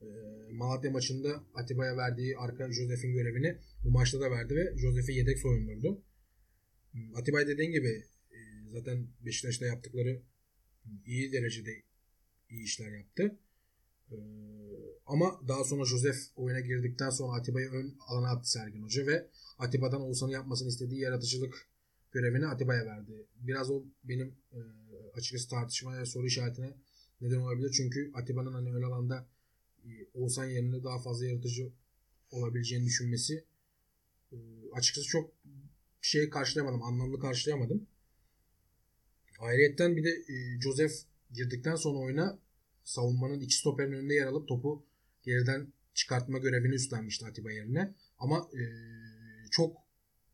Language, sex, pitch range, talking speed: Turkish, male, 120-135 Hz, 120 wpm